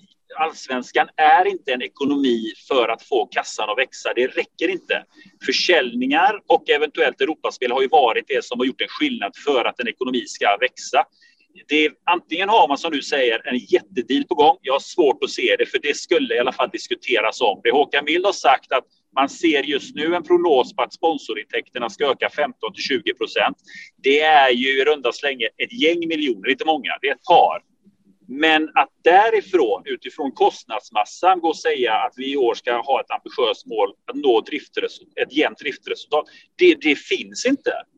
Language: Swedish